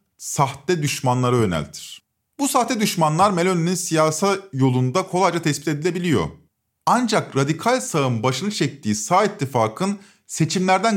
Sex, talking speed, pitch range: male, 110 wpm, 140-200 Hz